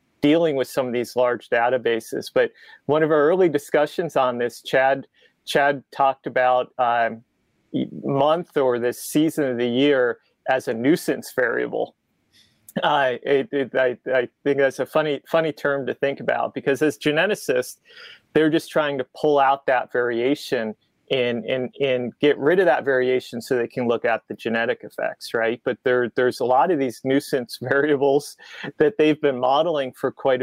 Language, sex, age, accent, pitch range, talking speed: English, male, 30-49, American, 120-145 Hz, 175 wpm